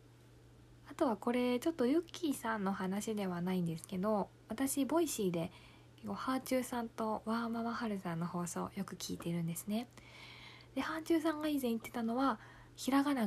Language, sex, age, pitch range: Japanese, female, 20-39, 180-240 Hz